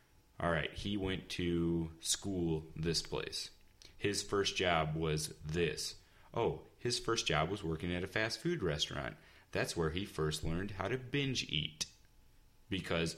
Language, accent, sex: English, American, male